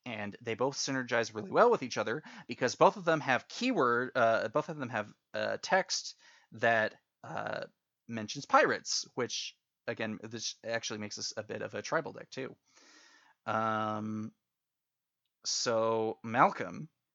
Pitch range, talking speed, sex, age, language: 110-135 Hz, 145 wpm, male, 30-49, English